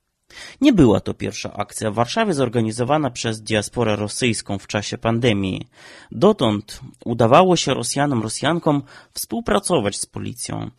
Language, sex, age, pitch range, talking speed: Polish, male, 30-49, 110-150 Hz, 120 wpm